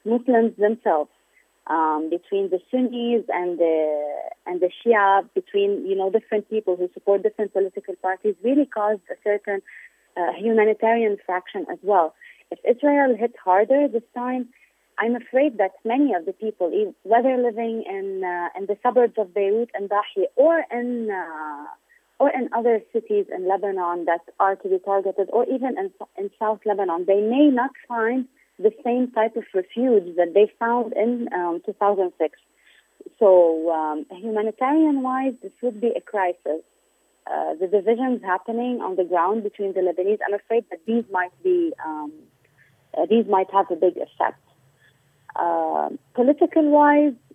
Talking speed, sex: 155 wpm, female